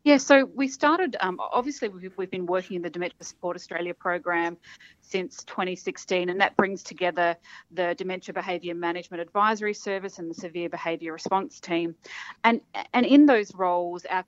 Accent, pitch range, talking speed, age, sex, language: Australian, 175-220 Hz, 165 wpm, 40-59, female, English